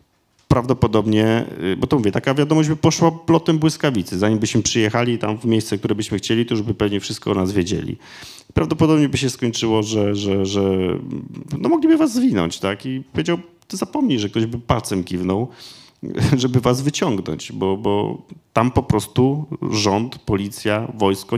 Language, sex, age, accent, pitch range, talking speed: Polish, male, 40-59, native, 95-130 Hz, 165 wpm